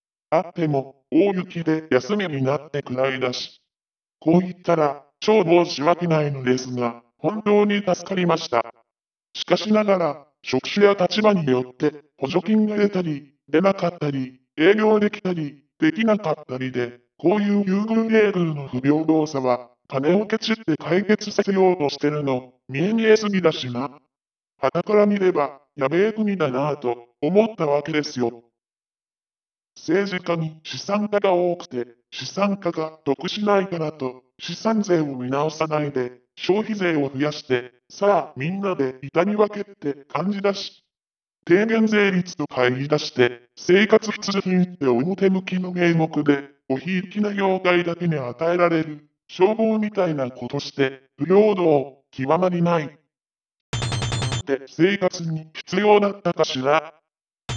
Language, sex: Japanese, female